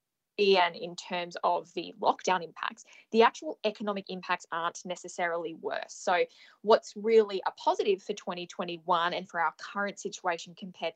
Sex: female